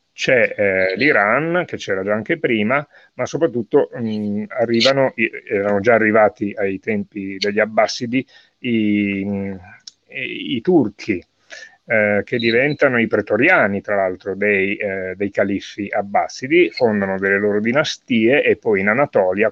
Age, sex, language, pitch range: 30-49, male, Italian, 100-120 Hz